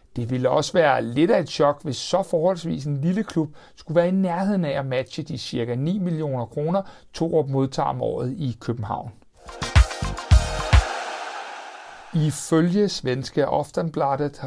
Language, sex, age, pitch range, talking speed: Danish, male, 60-79, 135-180 Hz, 150 wpm